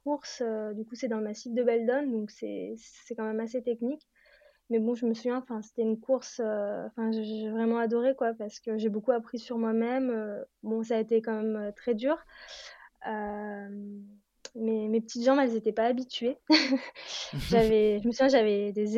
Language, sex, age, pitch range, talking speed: French, female, 20-39, 220-250 Hz, 205 wpm